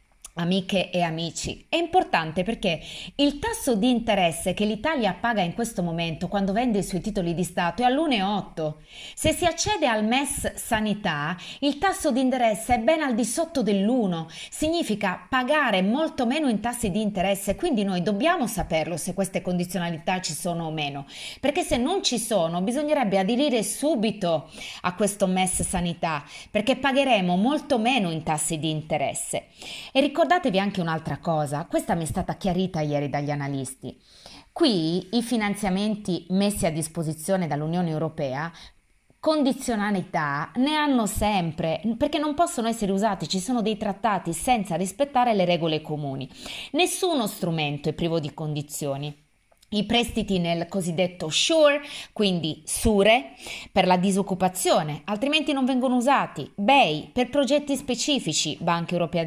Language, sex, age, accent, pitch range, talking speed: Italian, female, 30-49, native, 170-255 Hz, 145 wpm